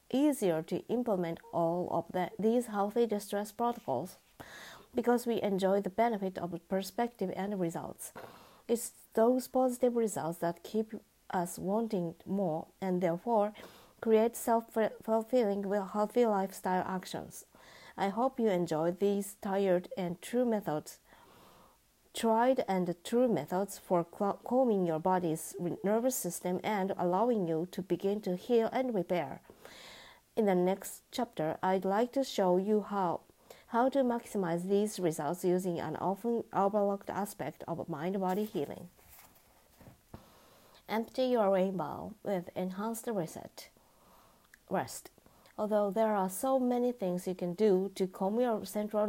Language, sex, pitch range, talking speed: English, female, 180-225 Hz, 130 wpm